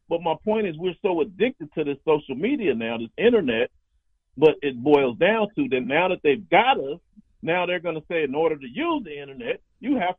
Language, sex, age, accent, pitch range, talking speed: English, male, 40-59, American, 150-210 Hz, 225 wpm